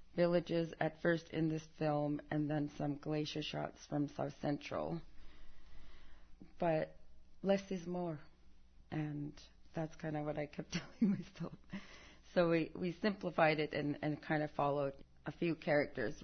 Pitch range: 140-160 Hz